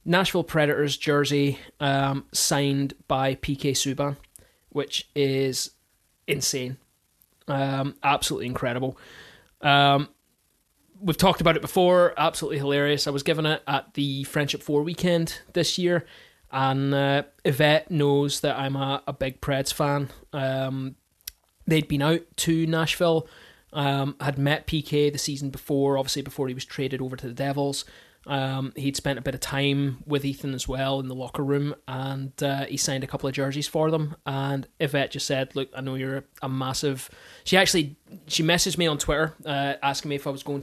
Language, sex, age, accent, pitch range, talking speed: English, male, 20-39, British, 135-155 Hz, 170 wpm